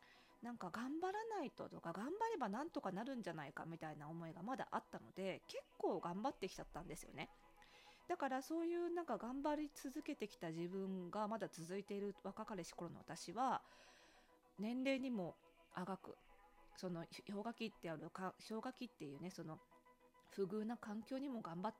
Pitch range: 175-260 Hz